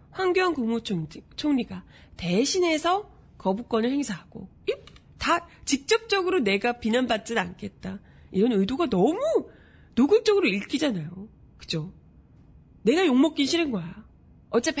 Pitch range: 195-315 Hz